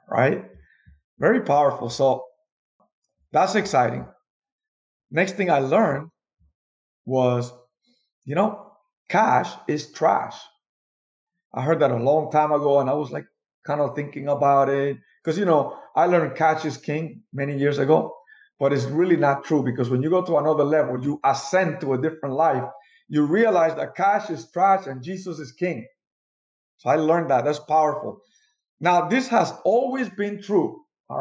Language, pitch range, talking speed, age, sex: English, 130-185 Hz, 160 wpm, 50-69, male